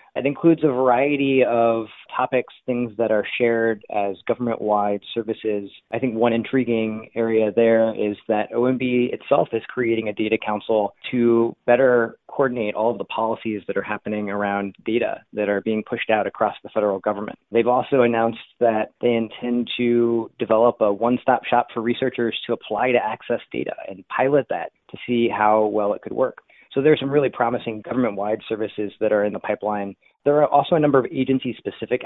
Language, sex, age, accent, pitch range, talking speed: English, male, 30-49, American, 105-125 Hz, 180 wpm